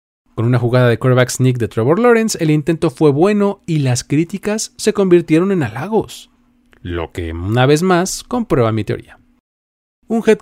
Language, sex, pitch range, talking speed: Spanish, male, 115-175 Hz, 175 wpm